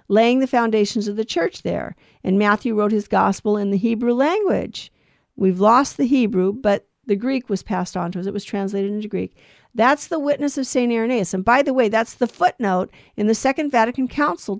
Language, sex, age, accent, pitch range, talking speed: English, female, 50-69, American, 210-265 Hz, 210 wpm